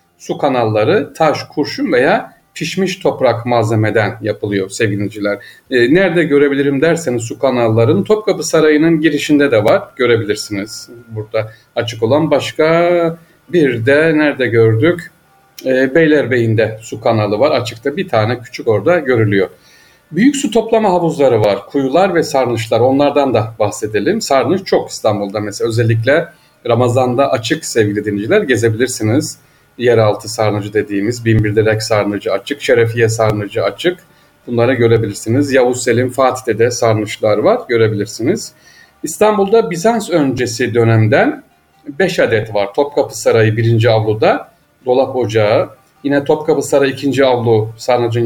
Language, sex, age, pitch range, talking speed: Turkish, male, 40-59, 110-145 Hz, 125 wpm